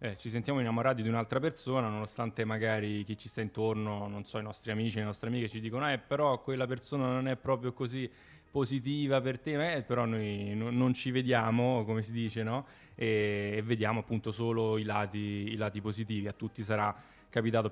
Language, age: Italian, 20-39